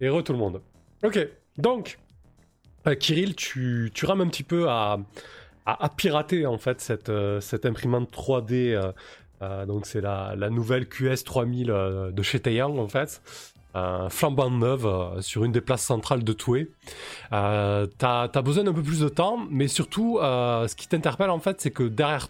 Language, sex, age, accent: French, male, 20-39, French